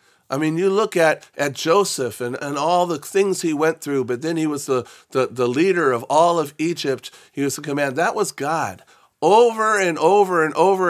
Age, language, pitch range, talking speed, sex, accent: 50-69, English, 105-150 Hz, 215 wpm, male, American